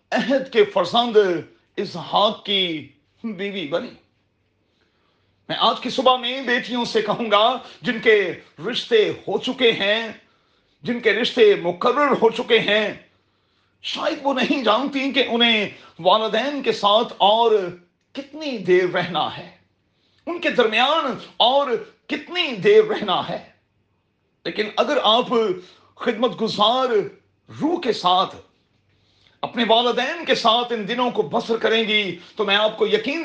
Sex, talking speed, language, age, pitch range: male, 130 wpm, Urdu, 40-59, 170-235 Hz